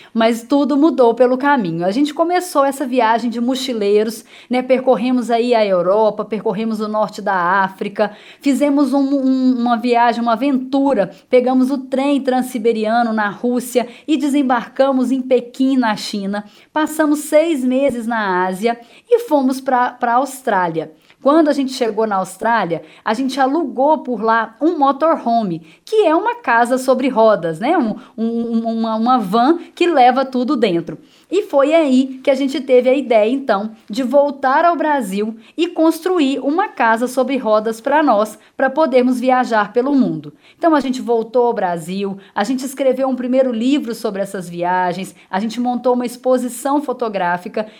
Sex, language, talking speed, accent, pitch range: female, Portuguese, 155 wpm, Brazilian, 215-275 Hz